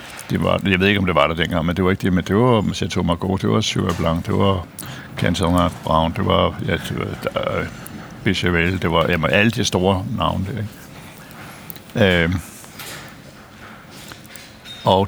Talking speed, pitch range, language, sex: 165 wpm, 90-110 Hz, Danish, male